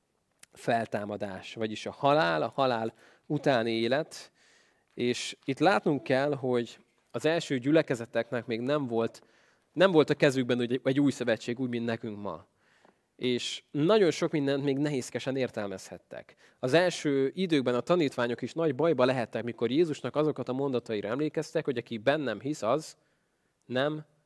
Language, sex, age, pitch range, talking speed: Hungarian, male, 20-39, 120-155 Hz, 145 wpm